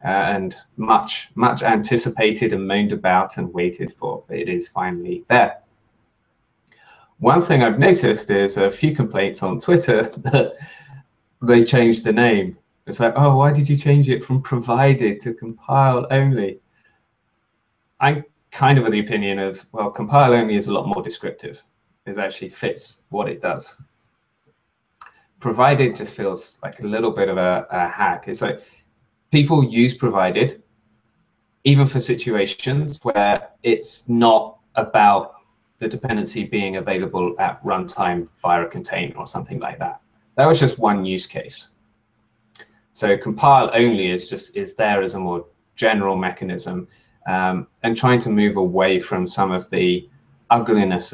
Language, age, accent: English, 20-39, British